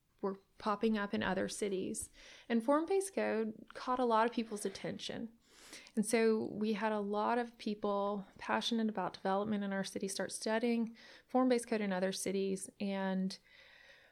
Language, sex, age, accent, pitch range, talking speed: English, female, 20-39, American, 205-235 Hz, 155 wpm